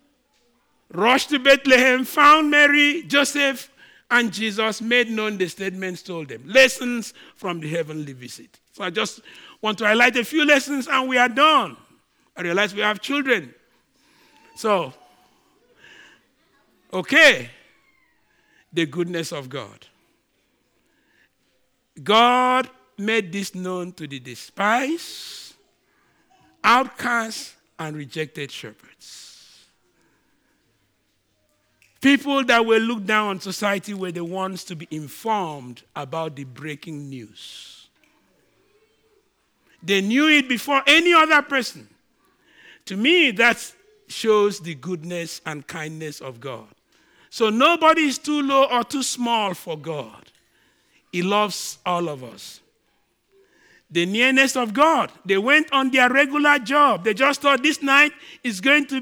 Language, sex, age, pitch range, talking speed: English, male, 50-69, 175-280 Hz, 125 wpm